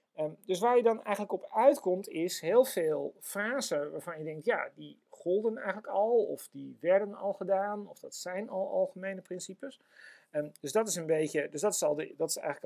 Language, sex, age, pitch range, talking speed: Dutch, male, 40-59, 165-230 Hz, 165 wpm